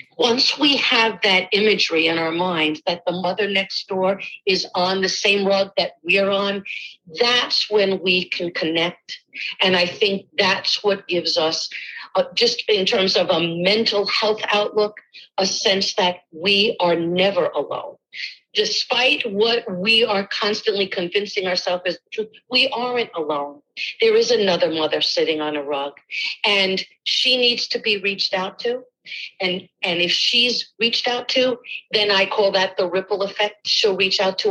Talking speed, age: 165 wpm, 50-69